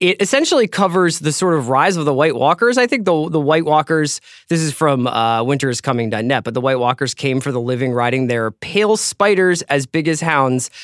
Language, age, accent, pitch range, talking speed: English, 20-39, American, 125-165 Hz, 210 wpm